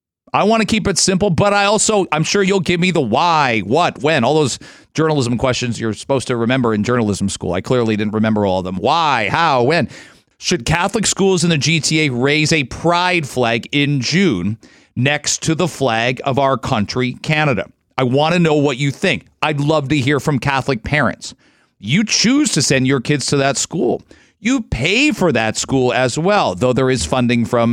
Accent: American